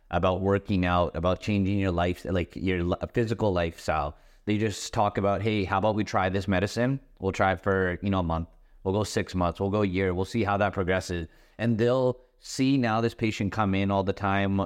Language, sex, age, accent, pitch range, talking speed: English, male, 30-49, American, 95-110 Hz, 220 wpm